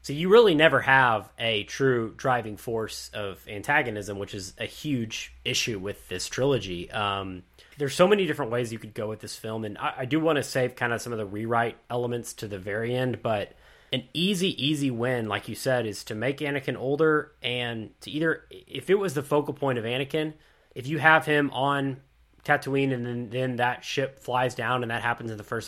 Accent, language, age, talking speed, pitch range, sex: American, English, 20-39, 215 wpm, 115-145 Hz, male